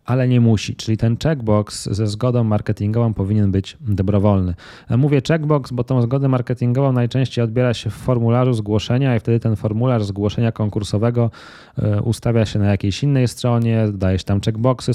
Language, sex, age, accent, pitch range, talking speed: Polish, male, 20-39, native, 100-120 Hz, 160 wpm